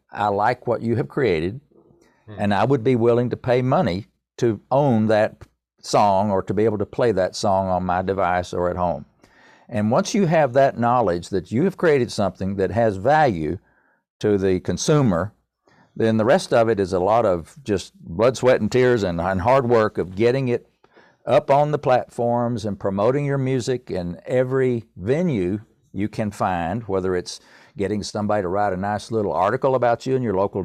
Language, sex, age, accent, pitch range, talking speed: English, male, 50-69, American, 100-130 Hz, 190 wpm